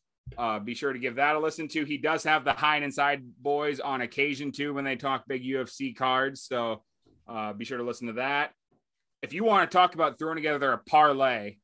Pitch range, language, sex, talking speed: 135-155 Hz, English, male, 220 wpm